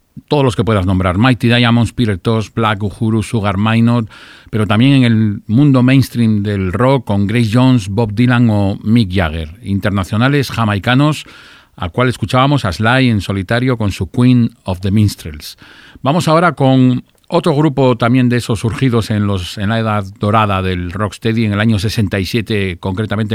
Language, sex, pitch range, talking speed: Spanish, male, 100-125 Hz, 170 wpm